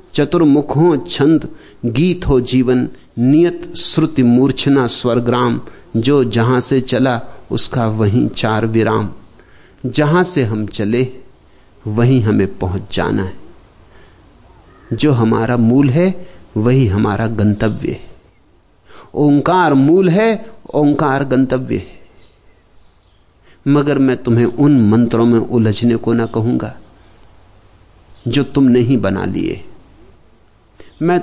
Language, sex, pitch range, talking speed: Danish, male, 105-145 Hz, 100 wpm